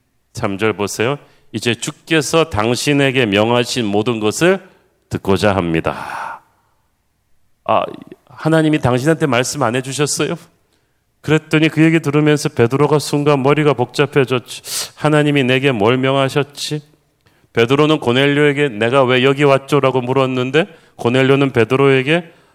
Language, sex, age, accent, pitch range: Korean, male, 40-59, native, 125-155 Hz